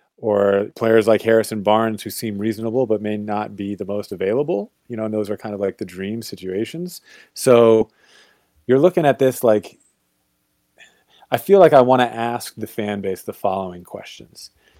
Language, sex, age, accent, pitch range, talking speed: English, male, 30-49, American, 100-125 Hz, 185 wpm